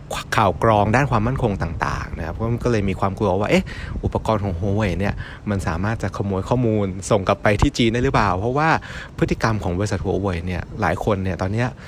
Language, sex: Thai, male